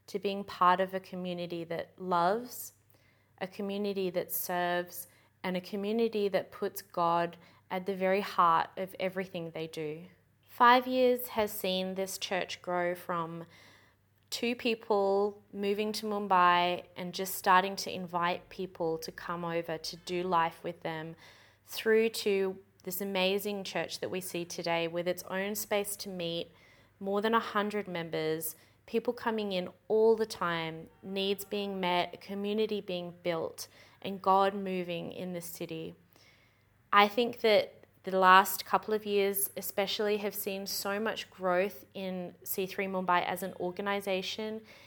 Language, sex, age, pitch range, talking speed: English, female, 20-39, 175-205 Hz, 150 wpm